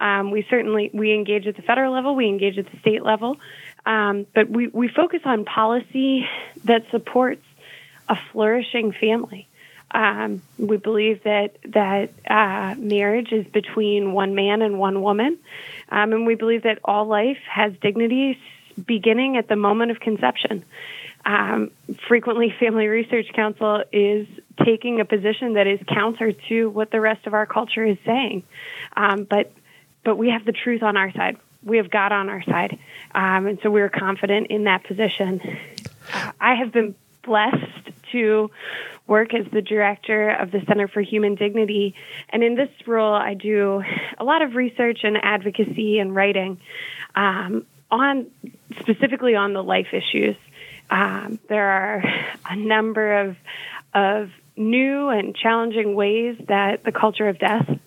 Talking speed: 160 wpm